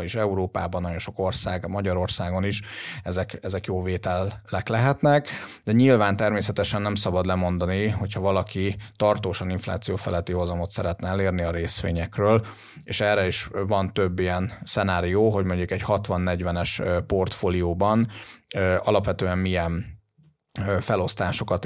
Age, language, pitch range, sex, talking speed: 30-49, Hungarian, 90-110 Hz, male, 120 wpm